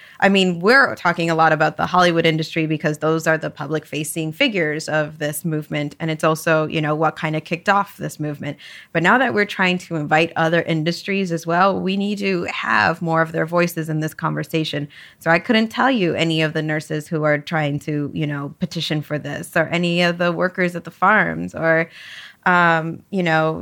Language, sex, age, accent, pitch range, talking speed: English, female, 20-39, American, 155-180 Hz, 210 wpm